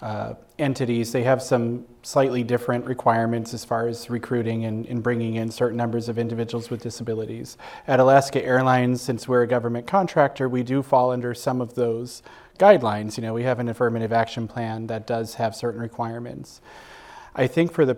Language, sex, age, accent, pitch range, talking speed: English, male, 30-49, American, 115-130 Hz, 185 wpm